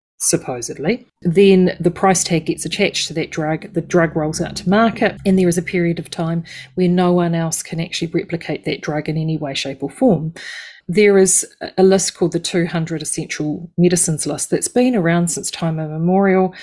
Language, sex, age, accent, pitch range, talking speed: English, female, 30-49, Australian, 165-195 Hz, 195 wpm